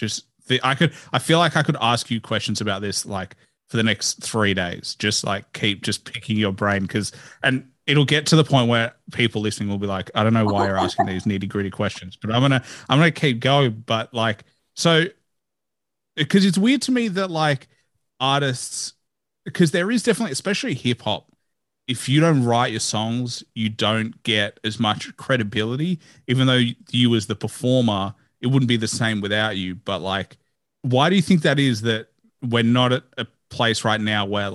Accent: Australian